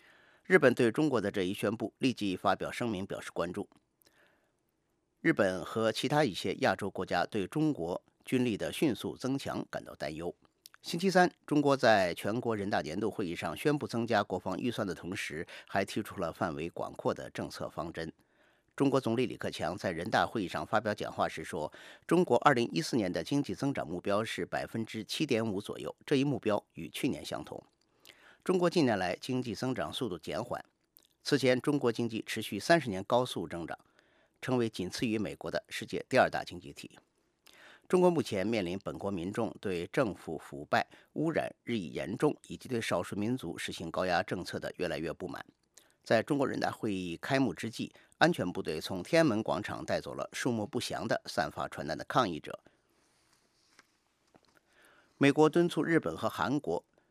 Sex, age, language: male, 50-69, English